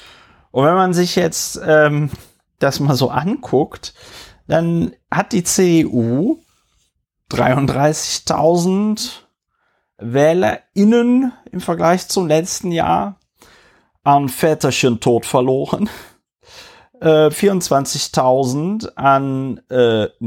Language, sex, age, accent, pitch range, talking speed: German, male, 30-49, German, 125-170 Hz, 85 wpm